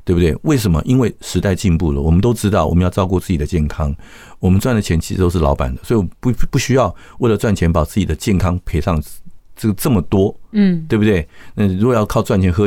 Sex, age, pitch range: male, 50-69, 80-125 Hz